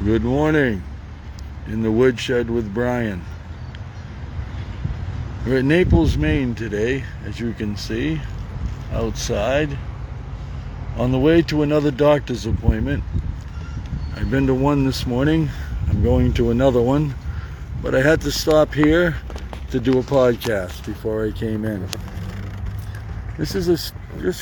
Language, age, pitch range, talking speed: English, 60-79, 95-135 Hz, 130 wpm